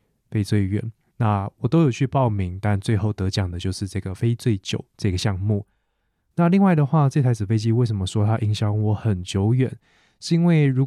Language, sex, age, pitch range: Chinese, male, 20-39, 100-125 Hz